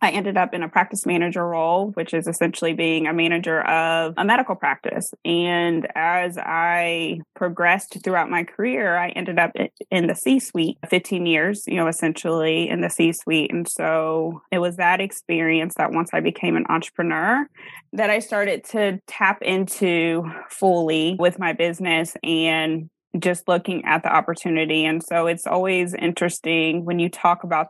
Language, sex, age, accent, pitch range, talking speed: English, female, 20-39, American, 165-185 Hz, 165 wpm